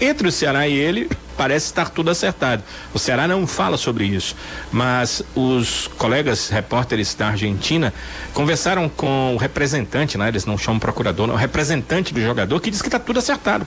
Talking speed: 180 wpm